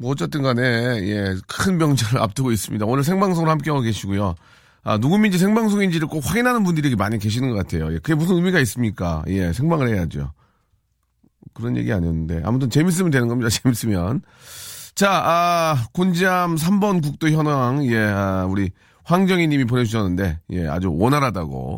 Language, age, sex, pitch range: Korean, 40-59, male, 100-150 Hz